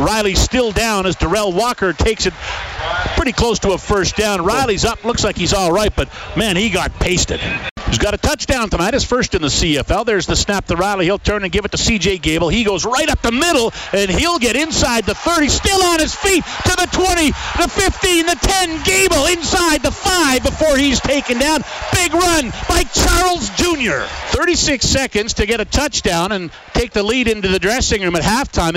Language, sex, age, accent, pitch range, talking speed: English, male, 50-69, American, 200-305 Hz, 210 wpm